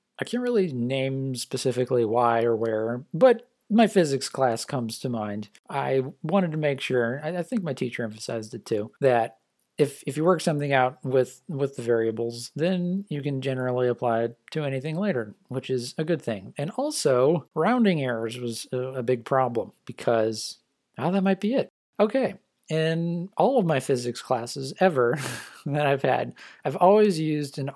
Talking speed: 175 wpm